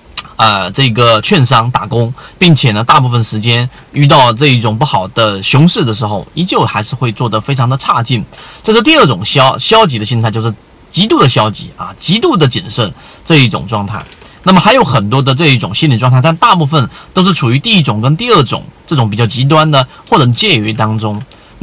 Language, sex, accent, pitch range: Chinese, male, native, 120-160 Hz